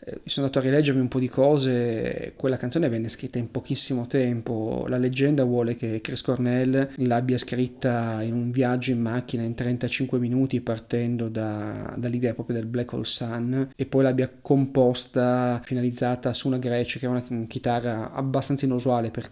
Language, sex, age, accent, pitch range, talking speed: Italian, male, 30-49, native, 115-130 Hz, 170 wpm